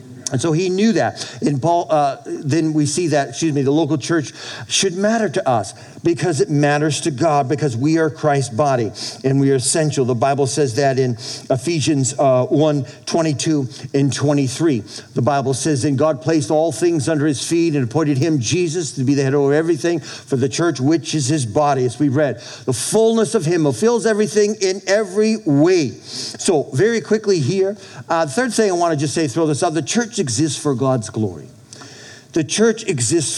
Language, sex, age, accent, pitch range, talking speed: English, male, 50-69, American, 135-175 Hz, 200 wpm